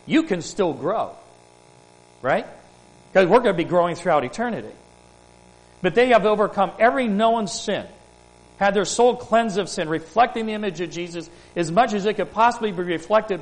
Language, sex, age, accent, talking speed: English, male, 50-69, American, 175 wpm